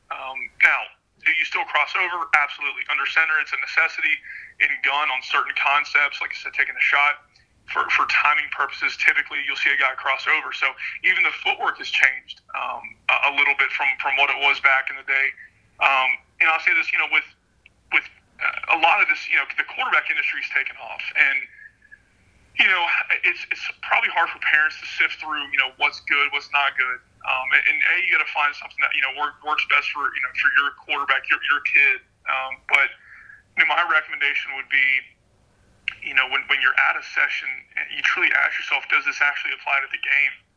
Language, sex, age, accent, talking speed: English, male, 30-49, American, 210 wpm